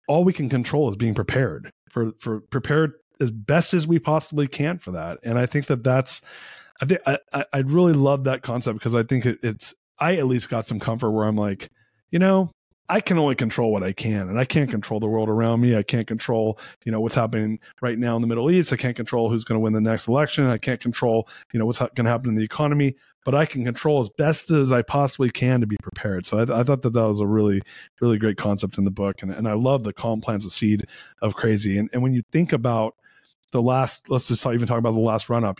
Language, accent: English, American